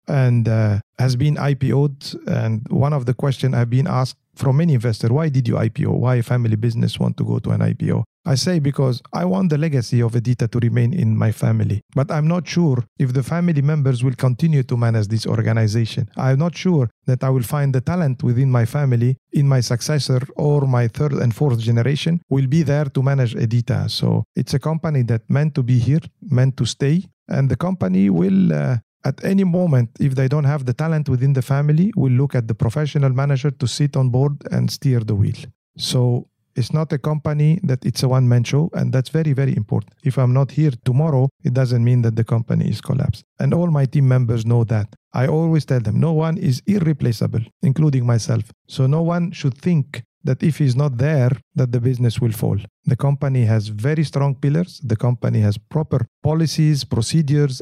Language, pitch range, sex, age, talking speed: English, 120-150 Hz, male, 50-69, 210 wpm